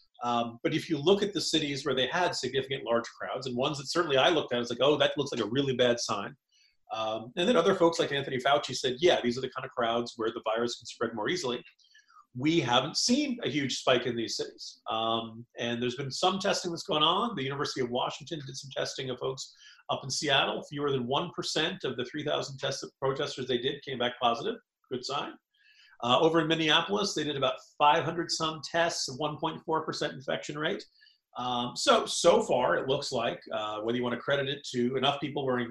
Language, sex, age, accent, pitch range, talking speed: English, male, 40-59, American, 125-175 Hz, 215 wpm